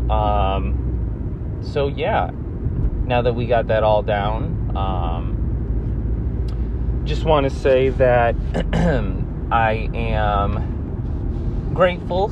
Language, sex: English, male